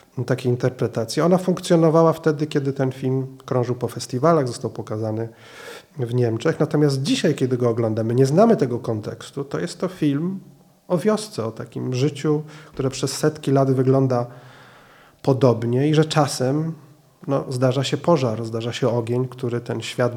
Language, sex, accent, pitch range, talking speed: Polish, male, native, 120-150 Hz, 150 wpm